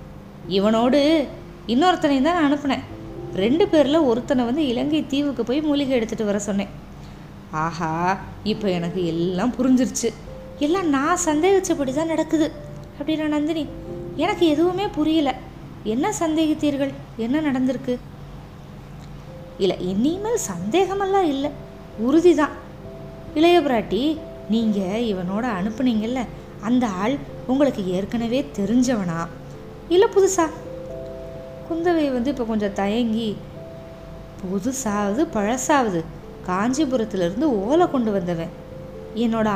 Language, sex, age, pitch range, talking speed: Tamil, female, 20-39, 200-310 Hz, 95 wpm